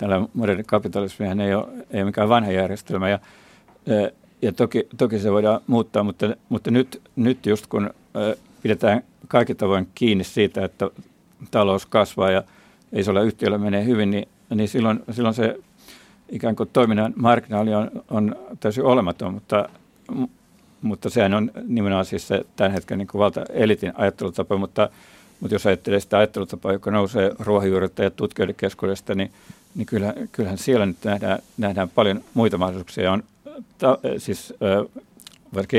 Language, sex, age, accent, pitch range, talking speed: Finnish, male, 50-69, native, 100-115 Hz, 145 wpm